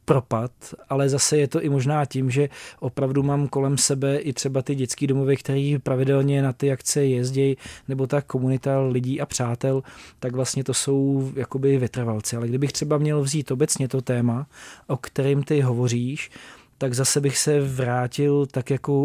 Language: Czech